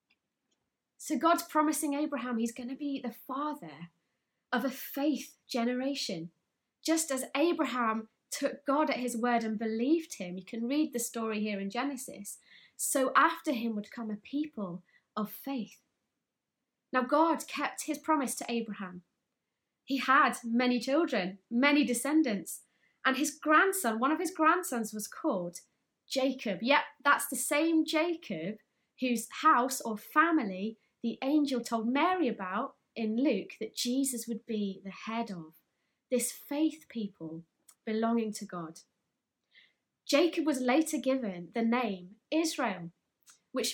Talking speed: 140 wpm